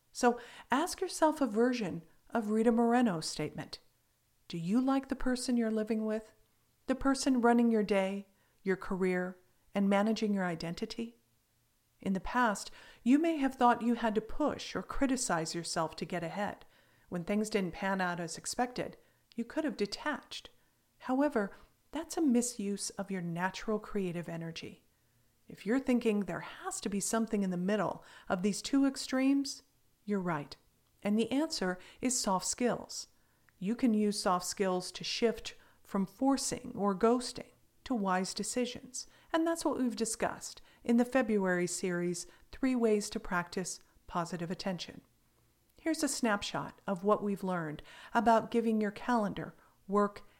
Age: 50-69